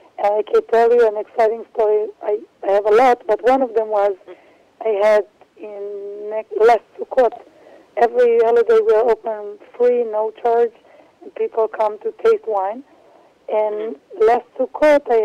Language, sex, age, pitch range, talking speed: English, female, 60-79, 220-290 Hz, 155 wpm